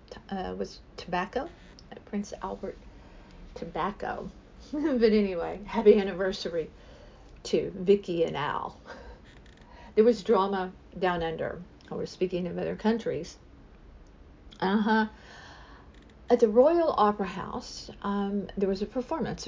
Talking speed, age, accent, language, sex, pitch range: 115 wpm, 50-69, American, English, female, 185-240 Hz